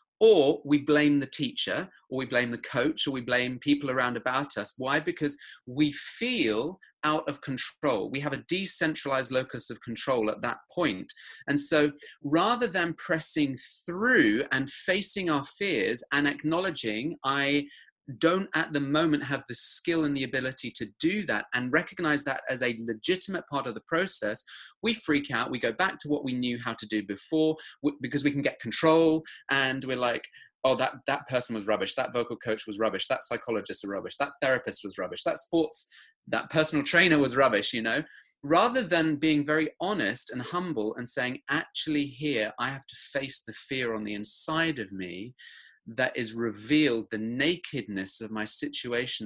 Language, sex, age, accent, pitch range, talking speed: English, male, 30-49, British, 125-155 Hz, 185 wpm